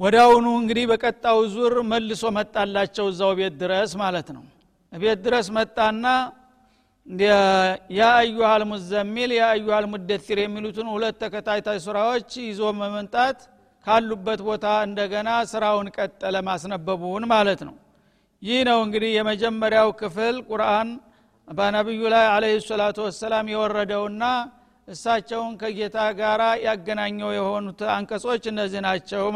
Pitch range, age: 205-230 Hz, 60-79